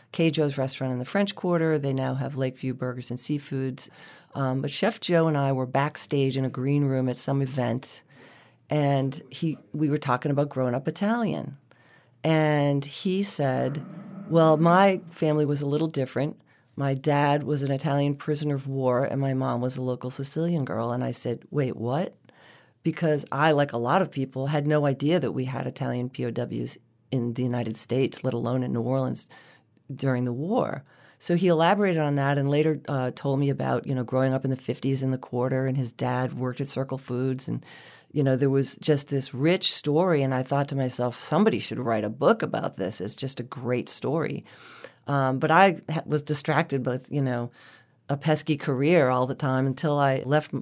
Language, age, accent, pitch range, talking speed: English, 40-59, American, 130-155 Hz, 200 wpm